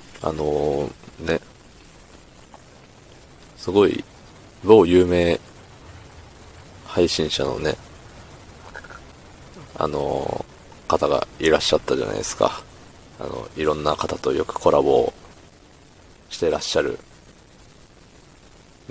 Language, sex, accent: Japanese, male, native